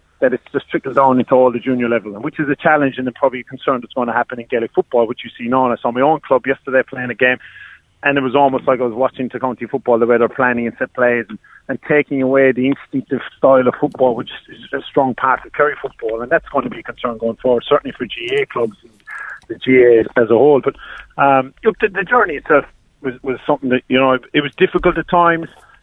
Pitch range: 125-140 Hz